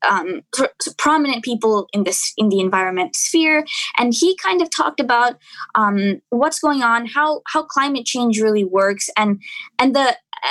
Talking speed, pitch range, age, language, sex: 165 wpm, 215-300 Hz, 20-39, English, female